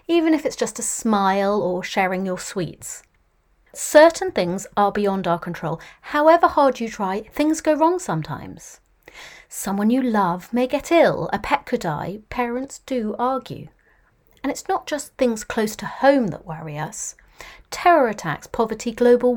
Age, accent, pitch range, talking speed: 40-59, British, 180-275 Hz, 160 wpm